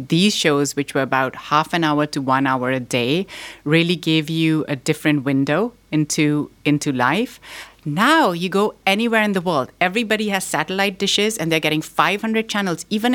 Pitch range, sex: 150-195 Hz, female